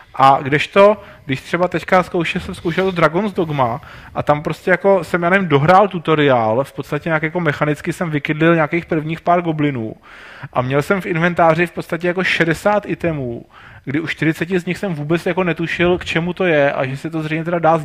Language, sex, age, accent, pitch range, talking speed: Czech, male, 30-49, native, 150-185 Hz, 210 wpm